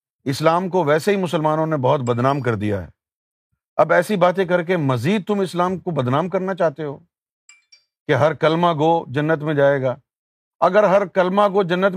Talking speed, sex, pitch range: 185 wpm, male, 145-195 Hz